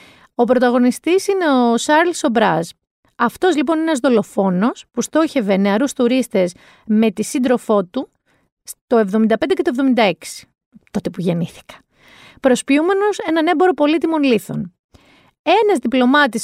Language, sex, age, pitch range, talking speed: Greek, female, 40-59, 215-315 Hz, 125 wpm